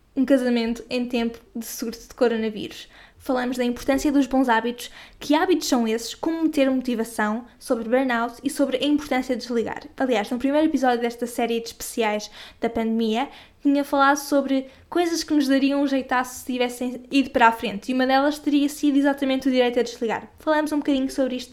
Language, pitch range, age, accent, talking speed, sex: Portuguese, 240-280 Hz, 10-29, Brazilian, 190 wpm, female